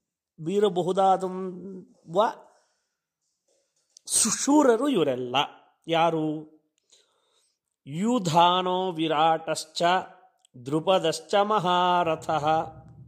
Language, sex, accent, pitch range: Kannada, male, native, 150-220 Hz